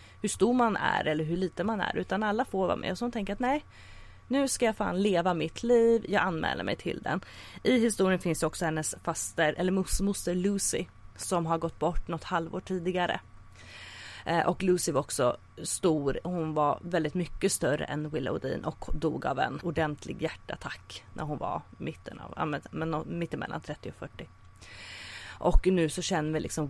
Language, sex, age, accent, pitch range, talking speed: English, female, 30-49, Swedish, 150-205 Hz, 185 wpm